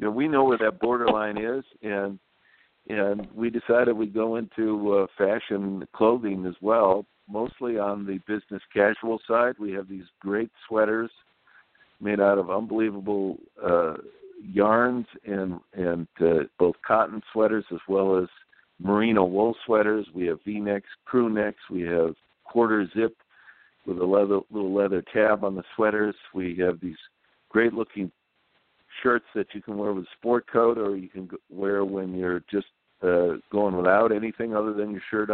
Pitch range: 95-110 Hz